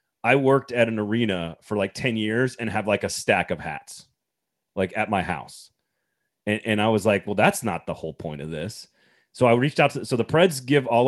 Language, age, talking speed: English, 30-49, 235 wpm